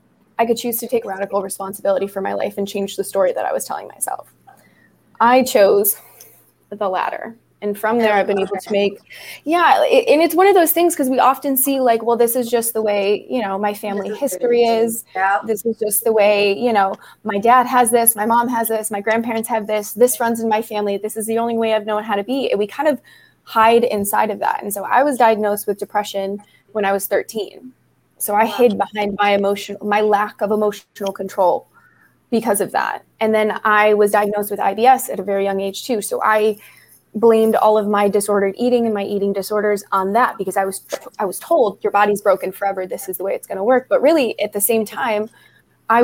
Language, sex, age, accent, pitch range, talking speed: English, female, 20-39, American, 200-235 Hz, 225 wpm